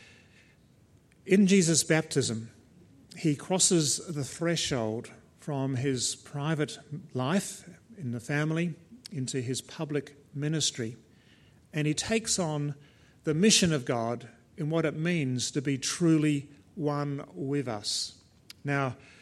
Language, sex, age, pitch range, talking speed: English, male, 50-69, 130-160 Hz, 115 wpm